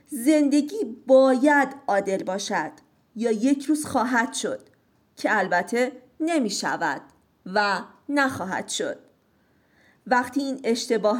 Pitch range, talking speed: 200-275 Hz, 100 wpm